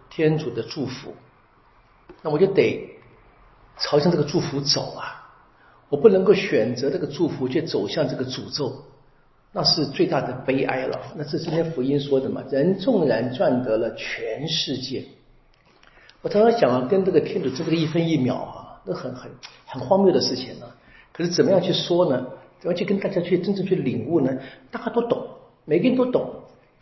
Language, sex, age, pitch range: Chinese, male, 50-69, 130-165 Hz